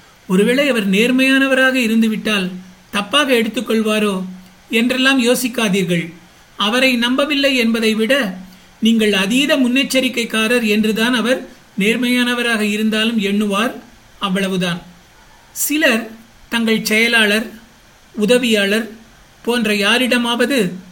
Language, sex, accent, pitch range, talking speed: Tamil, male, native, 205-250 Hz, 75 wpm